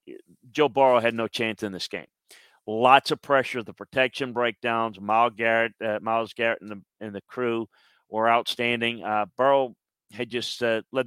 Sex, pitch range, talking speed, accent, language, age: male, 110-125 Hz, 175 wpm, American, English, 40-59